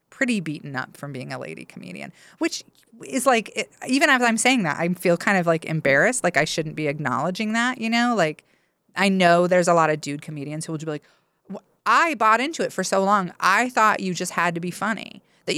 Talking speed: 225 wpm